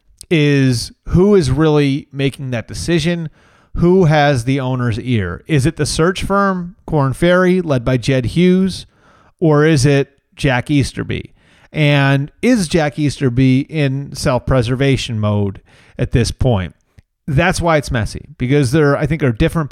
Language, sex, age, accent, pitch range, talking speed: English, male, 30-49, American, 125-160 Hz, 145 wpm